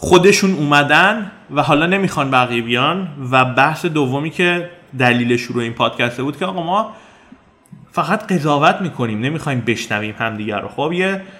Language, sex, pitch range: Persian, male, 120-170 Hz